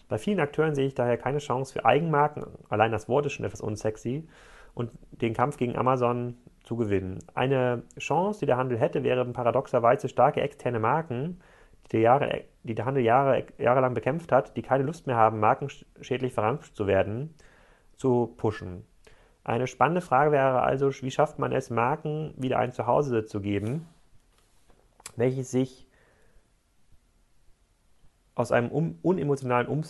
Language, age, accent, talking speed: German, 30-49, German, 145 wpm